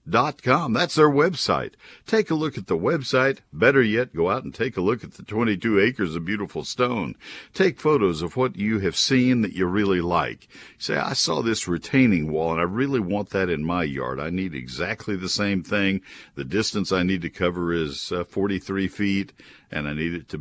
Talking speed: 210 wpm